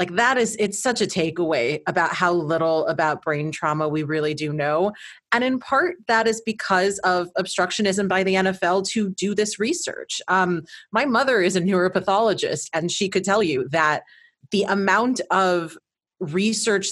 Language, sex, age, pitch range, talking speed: English, female, 30-49, 170-200 Hz, 170 wpm